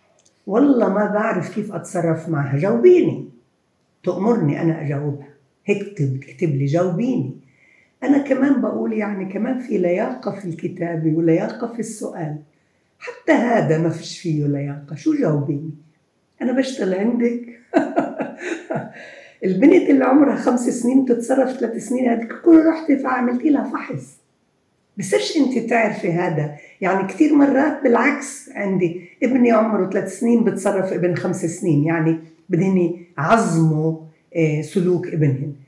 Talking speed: 120 wpm